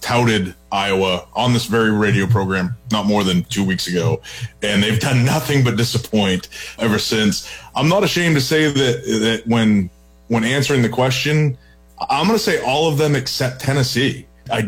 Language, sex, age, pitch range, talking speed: English, male, 30-49, 105-130 Hz, 175 wpm